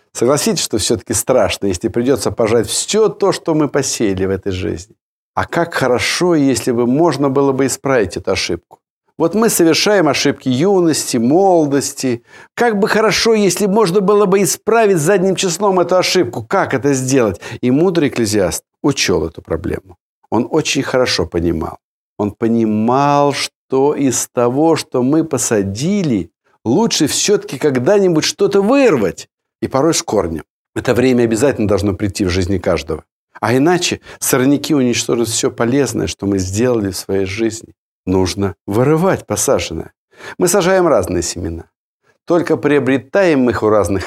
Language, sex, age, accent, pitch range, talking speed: Russian, male, 60-79, native, 105-175 Hz, 145 wpm